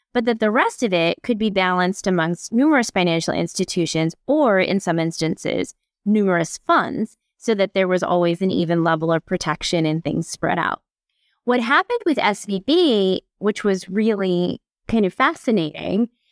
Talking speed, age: 160 wpm, 20-39